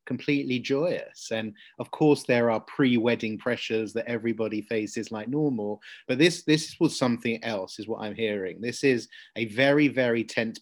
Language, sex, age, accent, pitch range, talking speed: English, male, 30-49, British, 115-140 Hz, 170 wpm